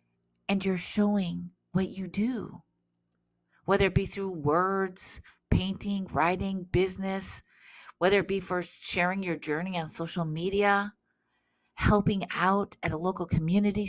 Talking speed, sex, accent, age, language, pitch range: 130 wpm, female, American, 40-59, English, 160-200 Hz